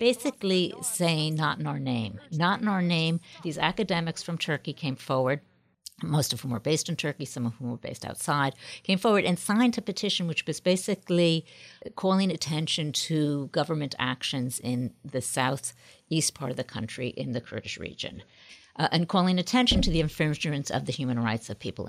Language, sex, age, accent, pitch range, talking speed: English, female, 50-69, American, 125-170 Hz, 185 wpm